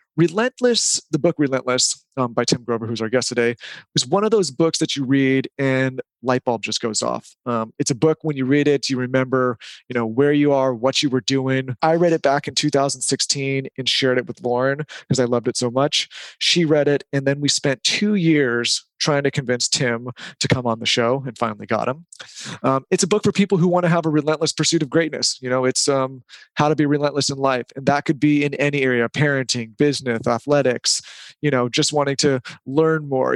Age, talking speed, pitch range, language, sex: 30-49, 225 wpm, 125-150 Hz, English, male